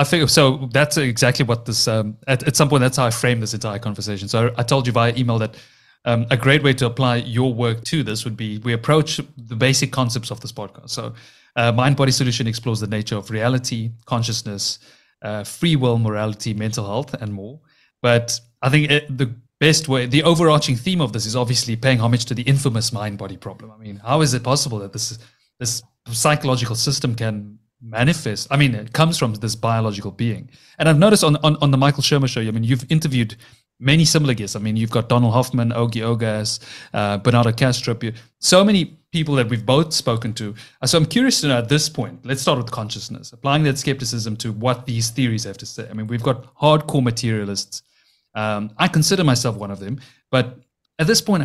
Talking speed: 215 wpm